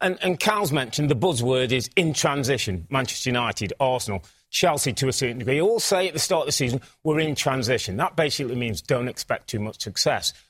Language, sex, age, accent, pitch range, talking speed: English, male, 40-59, British, 130-175 Hz, 205 wpm